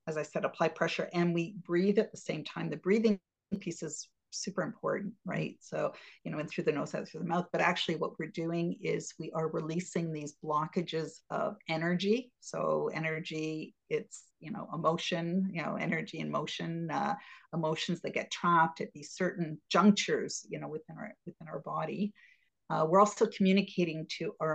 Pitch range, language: 160-205 Hz, English